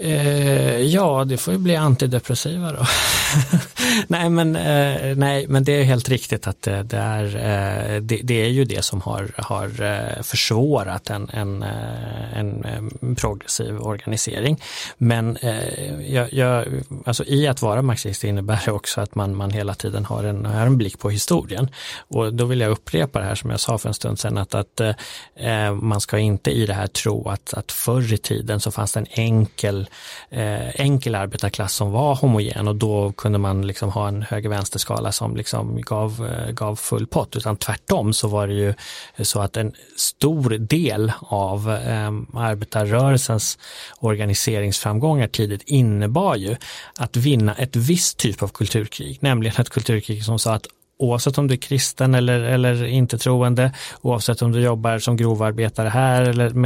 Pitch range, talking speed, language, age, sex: 105-130 Hz, 170 wpm, Swedish, 30-49, male